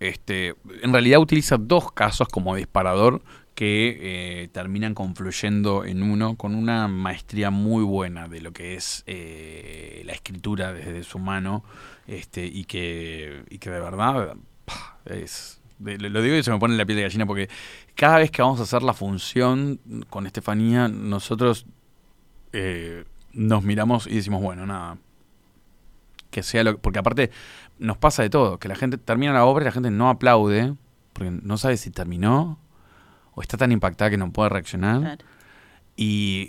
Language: Spanish